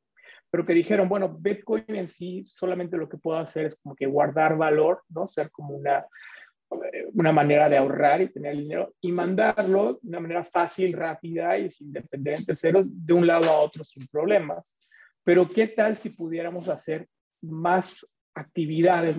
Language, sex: Spanish, male